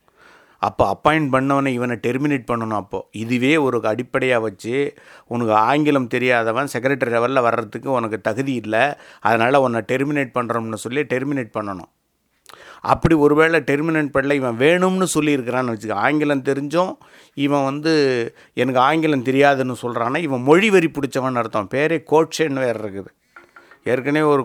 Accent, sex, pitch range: Indian, male, 120-145 Hz